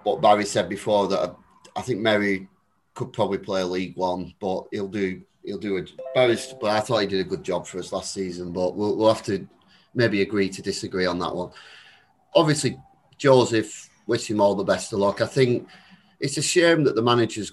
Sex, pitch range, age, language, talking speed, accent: male, 95-110 Hz, 30-49, English, 210 wpm, British